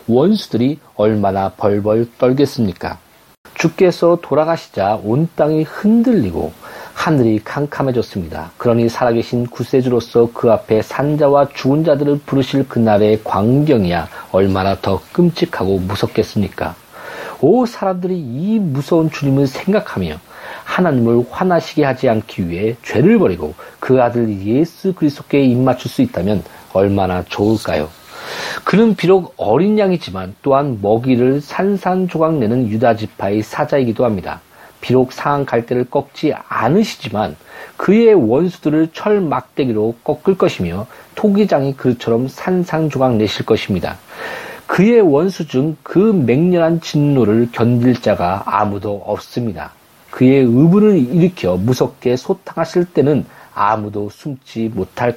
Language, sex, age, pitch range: Korean, male, 40-59, 110-165 Hz